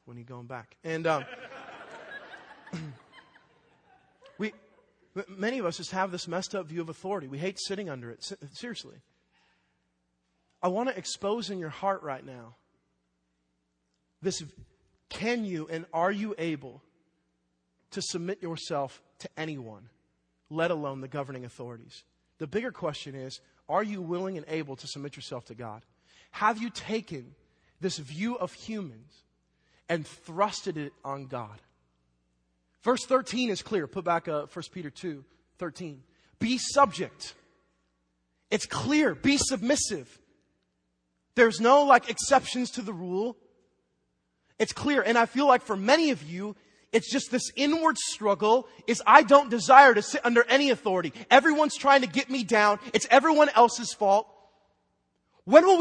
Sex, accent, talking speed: male, American, 145 wpm